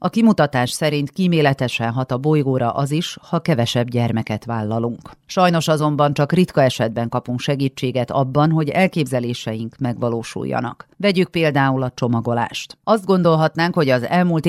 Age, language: 40-59, Hungarian